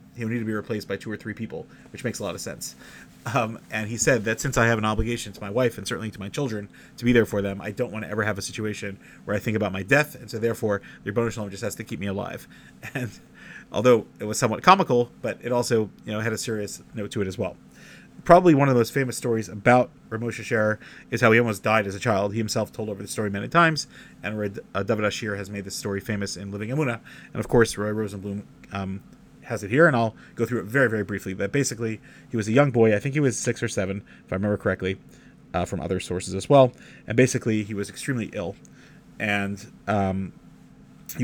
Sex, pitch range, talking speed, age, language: male, 100-120 Hz, 255 wpm, 30-49, English